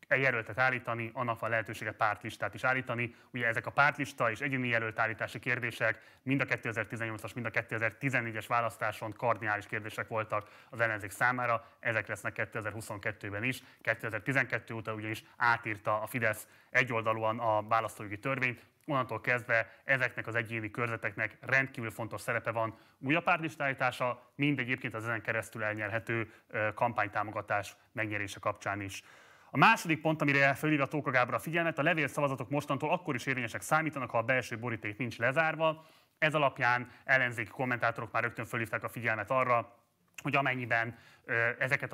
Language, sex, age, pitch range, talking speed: Hungarian, male, 30-49, 115-130 Hz, 145 wpm